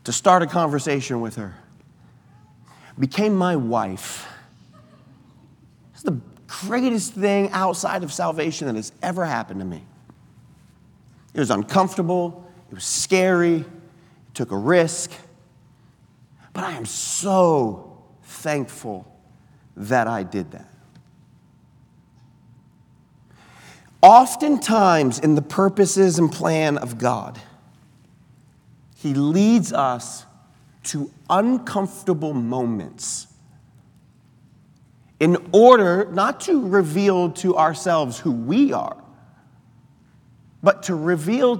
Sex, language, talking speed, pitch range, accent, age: male, English, 100 wpm, 150-215 Hz, American, 40-59